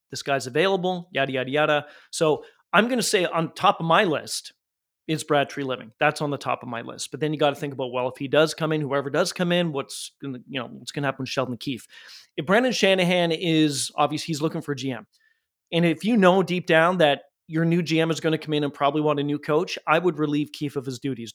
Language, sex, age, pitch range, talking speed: English, male, 30-49, 145-175 Hz, 260 wpm